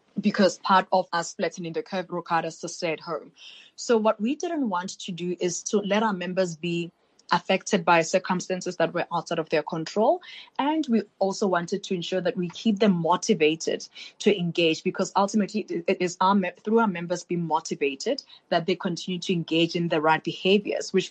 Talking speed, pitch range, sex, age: 190 wpm, 170-205 Hz, female, 20-39